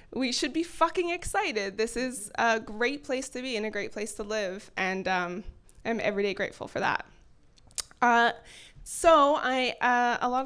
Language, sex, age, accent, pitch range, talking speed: English, female, 20-39, American, 215-265 Hz, 180 wpm